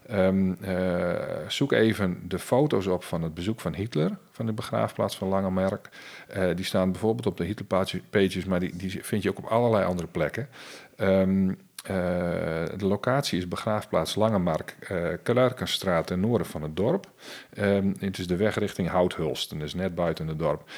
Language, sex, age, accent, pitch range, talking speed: Dutch, male, 40-59, Dutch, 85-105 Hz, 175 wpm